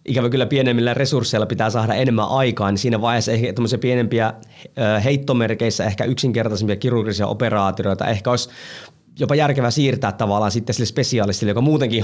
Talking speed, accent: 145 wpm, native